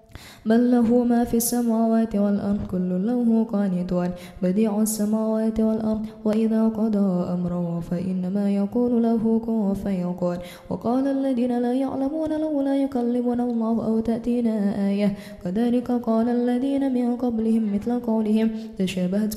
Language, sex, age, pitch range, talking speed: Indonesian, female, 10-29, 205-240 Hz, 125 wpm